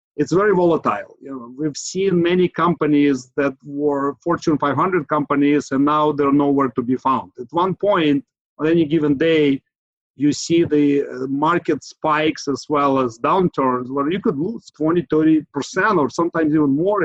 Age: 50-69